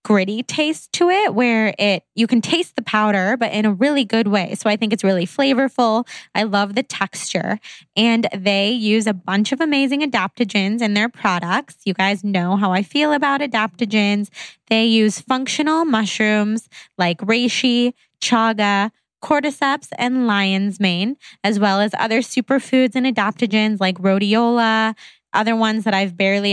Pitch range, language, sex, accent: 195-240 Hz, English, female, American